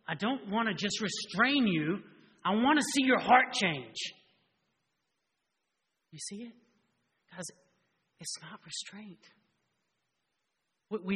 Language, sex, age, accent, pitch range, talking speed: English, male, 40-59, American, 150-200 Hz, 120 wpm